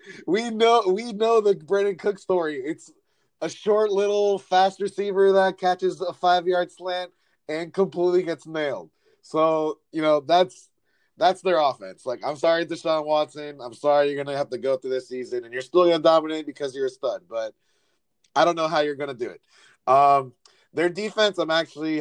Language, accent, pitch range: English, American, 135-175 Hz